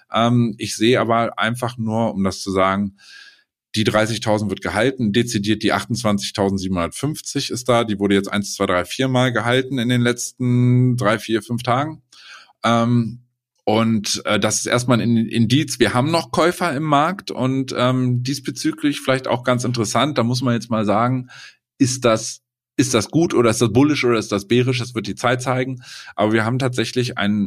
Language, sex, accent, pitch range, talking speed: German, male, German, 105-130 Hz, 175 wpm